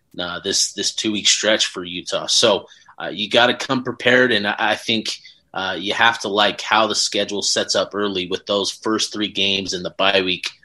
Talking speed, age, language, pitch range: 220 wpm, 30-49, English, 100-125 Hz